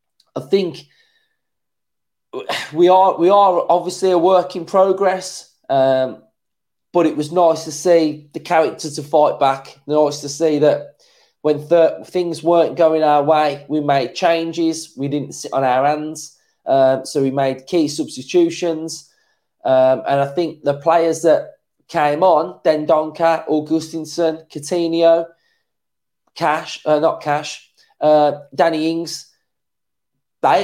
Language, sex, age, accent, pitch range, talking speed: English, male, 20-39, British, 150-175 Hz, 140 wpm